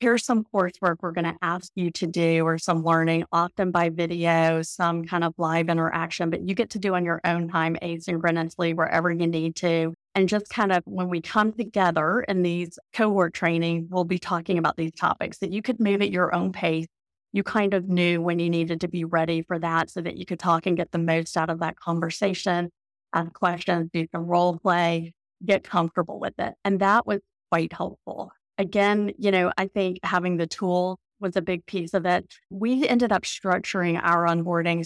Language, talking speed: English, 210 wpm